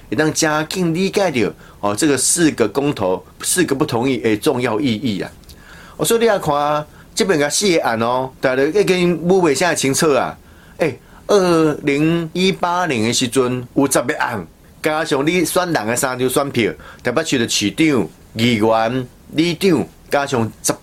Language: Chinese